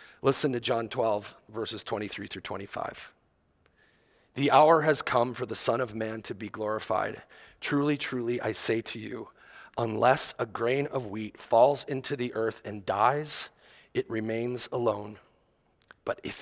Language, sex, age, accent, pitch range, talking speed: English, male, 40-59, American, 110-135 Hz, 155 wpm